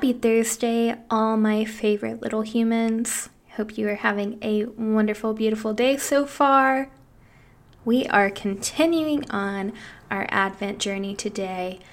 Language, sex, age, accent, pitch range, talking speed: English, female, 10-29, American, 200-230 Hz, 125 wpm